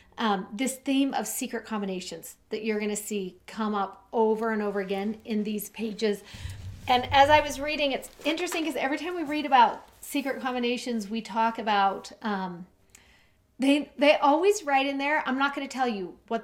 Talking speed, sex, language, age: 185 wpm, female, English, 40-59